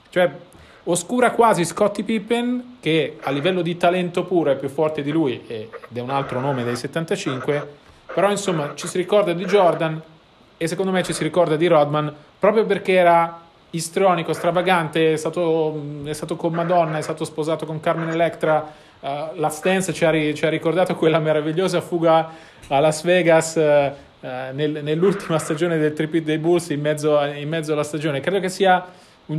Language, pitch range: Italian, 150-185 Hz